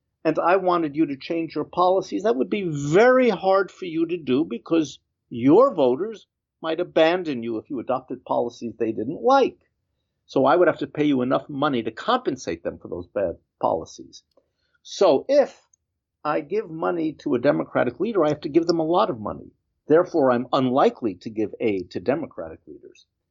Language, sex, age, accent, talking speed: English, male, 50-69, American, 190 wpm